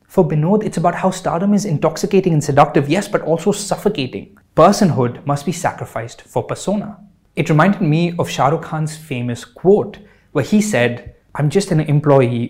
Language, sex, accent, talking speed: English, male, Indian, 175 wpm